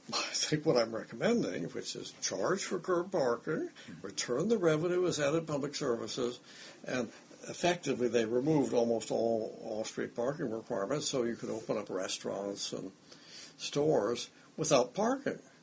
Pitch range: 115-175 Hz